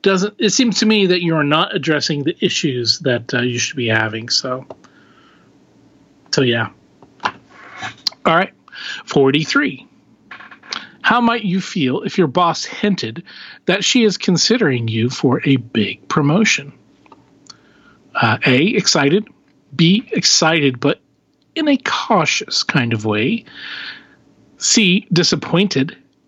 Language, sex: English, male